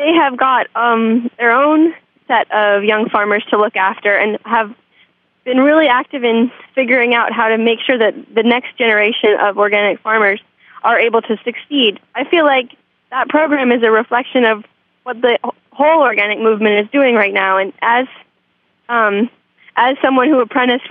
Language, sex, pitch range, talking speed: English, female, 215-265 Hz, 175 wpm